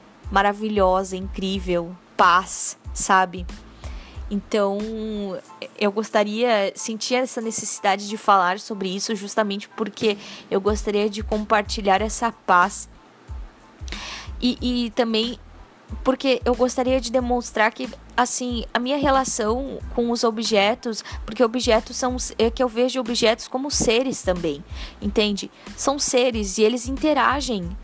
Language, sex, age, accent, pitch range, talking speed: Portuguese, female, 10-29, Brazilian, 210-255 Hz, 120 wpm